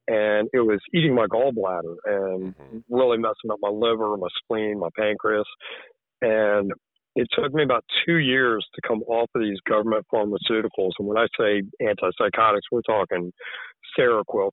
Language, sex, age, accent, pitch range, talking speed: English, male, 50-69, American, 105-140 Hz, 155 wpm